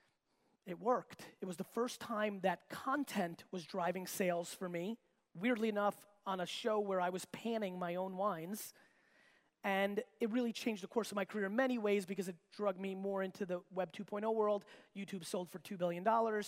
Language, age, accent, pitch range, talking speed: English, 30-49, American, 185-235 Hz, 195 wpm